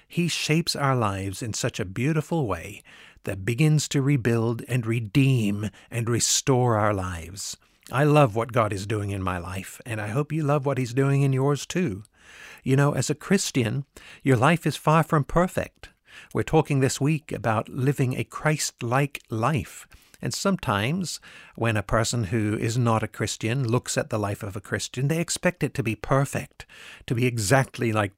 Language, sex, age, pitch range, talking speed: English, male, 60-79, 105-145 Hz, 185 wpm